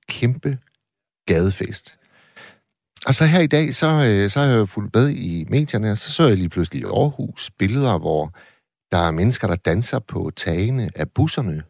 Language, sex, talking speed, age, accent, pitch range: Danish, male, 175 wpm, 60-79, native, 95-130 Hz